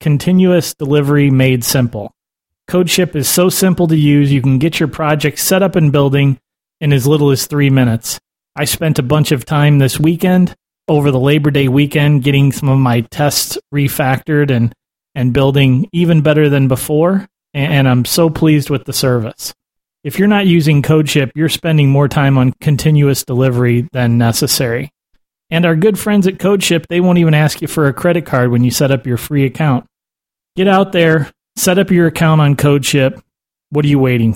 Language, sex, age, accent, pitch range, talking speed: English, male, 30-49, American, 135-160 Hz, 185 wpm